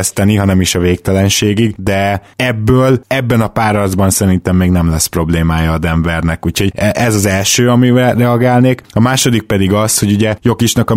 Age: 20-39